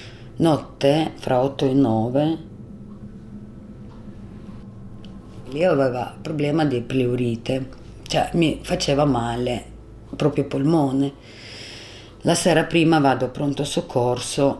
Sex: female